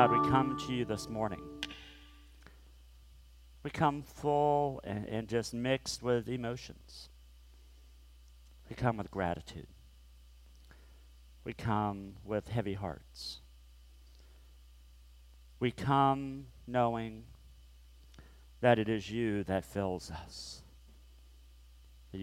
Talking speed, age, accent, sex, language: 95 wpm, 50-69, American, male, English